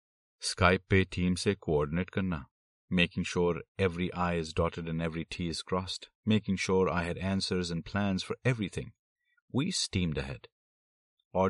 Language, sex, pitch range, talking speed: Hindi, male, 80-115 Hz, 155 wpm